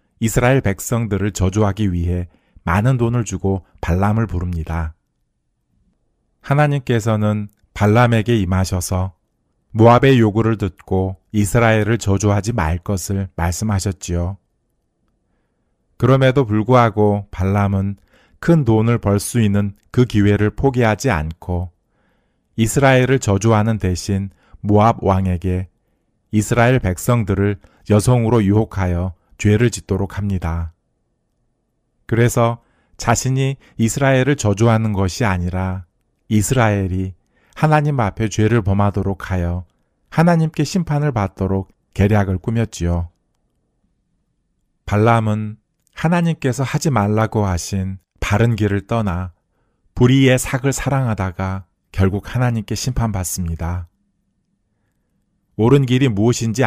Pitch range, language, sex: 95-120 Hz, Korean, male